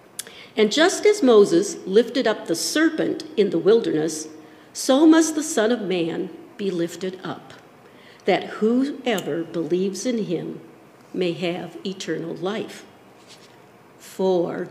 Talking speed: 120 wpm